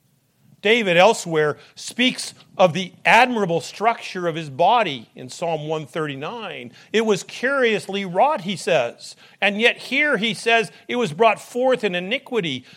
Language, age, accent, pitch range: English, 40-59, American, 165-230 Hz